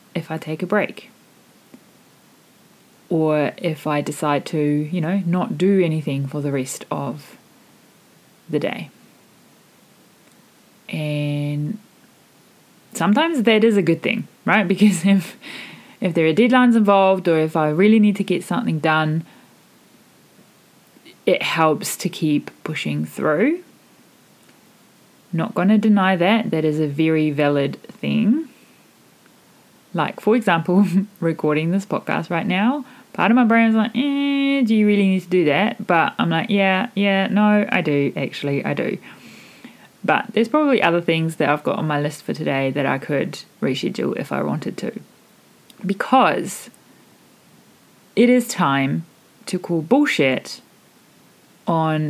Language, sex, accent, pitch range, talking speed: English, female, Australian, 155-215 Hz, 145 wpm